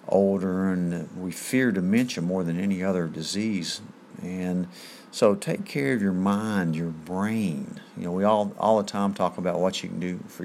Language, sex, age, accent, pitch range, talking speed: English, male, 50-69, American, 90-130 Hz, 190 wpm